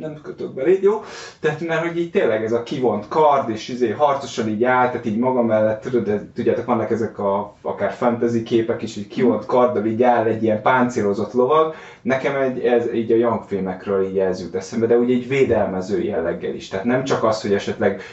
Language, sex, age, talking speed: Hungarian, male, 20-39, 210 wpm